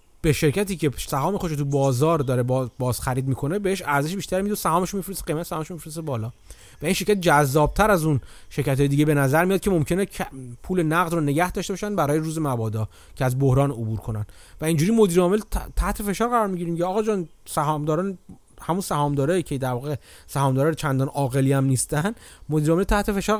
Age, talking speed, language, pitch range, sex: 30-49, 195 wpm, Persian, 130-185 Hz, male